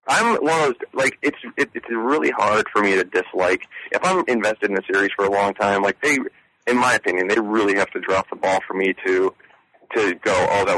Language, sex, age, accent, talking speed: English, male, 40-59, American, 240 wpm